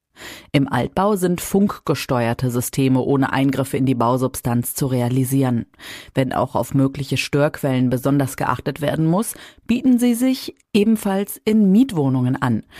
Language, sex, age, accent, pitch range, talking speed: German, female, 30-49, German, 130-180 Hz, 130 wpm